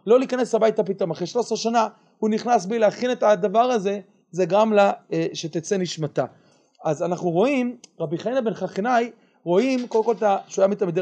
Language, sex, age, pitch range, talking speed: Hebrew, male, 30-49, 180-235 Hz, 170 wpm